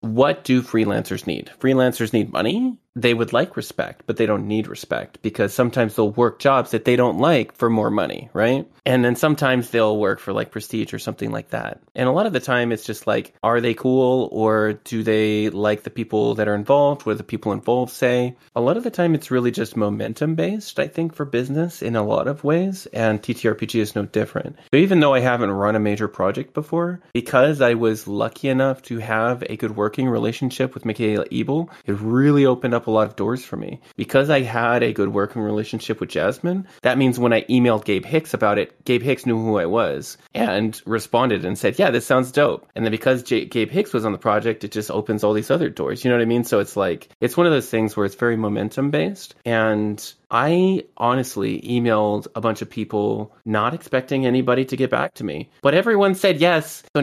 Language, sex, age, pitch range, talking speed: English, male, 20-39, 110-135 Hz, 220 wpm